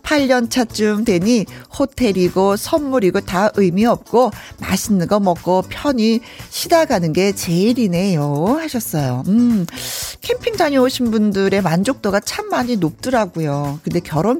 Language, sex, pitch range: Korean, female, 180-275 Hz